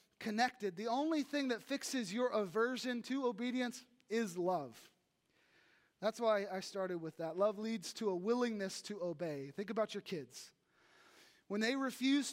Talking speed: 155 wpm